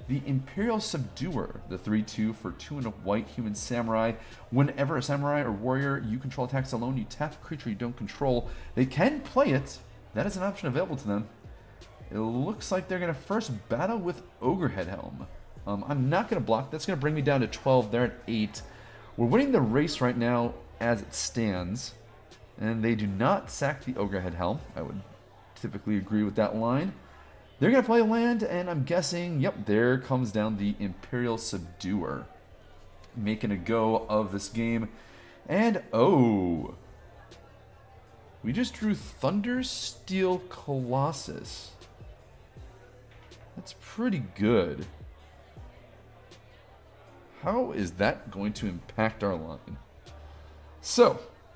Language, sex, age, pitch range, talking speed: English, male, 30-49, 100-140 Hz, 155 wpm